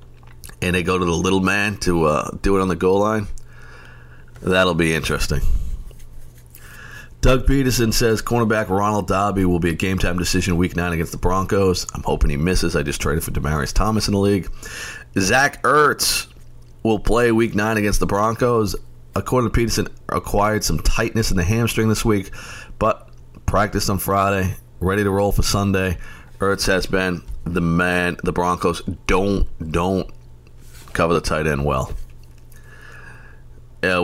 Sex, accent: male, American